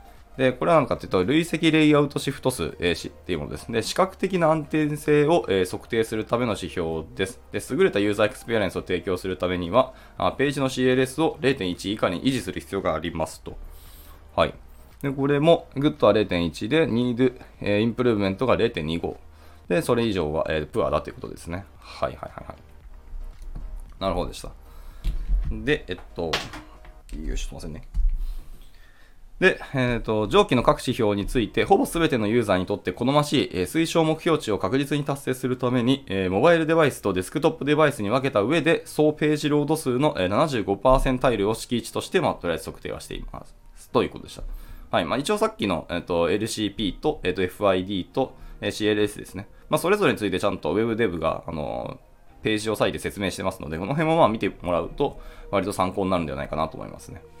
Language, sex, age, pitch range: Japanese, male, 20-39, 90-145 Hz